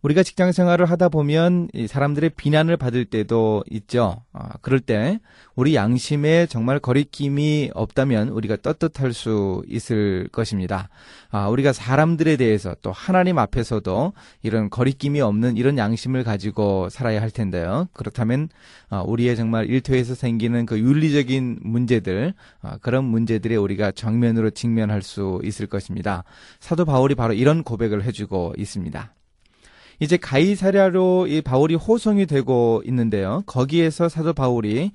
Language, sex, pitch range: Korean, male, 110-150 Hz